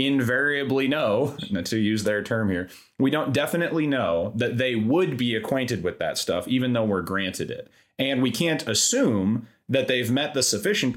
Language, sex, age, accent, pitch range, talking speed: English, male, 30-49, American, 105-135 Hz, 180 wpm